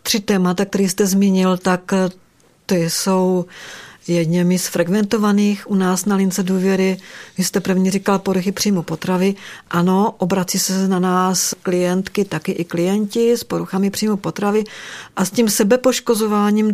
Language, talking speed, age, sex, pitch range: Czech, 145 wpm, 40-59, female, 180-205 Hz